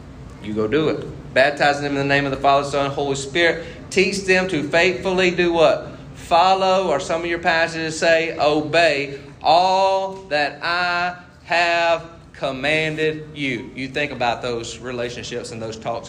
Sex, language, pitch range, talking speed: male, English, 135-180 Hz, 165 wpm